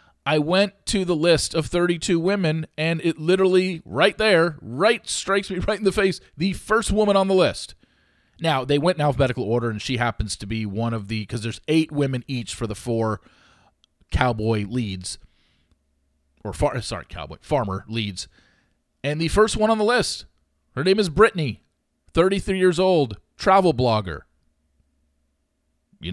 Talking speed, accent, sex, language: 165 wpm, American, male, English